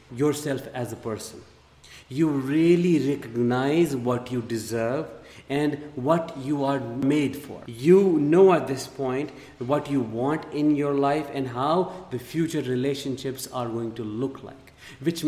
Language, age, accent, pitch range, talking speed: English, 50-69, Indian, 125-145 Hz, 150 wpm